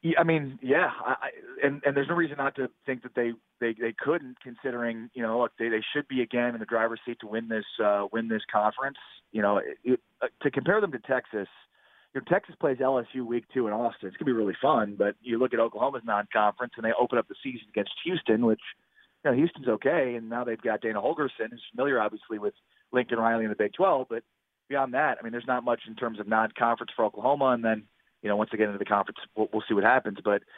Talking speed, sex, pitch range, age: 245 wpm, male, 110-130 Hz, 30-49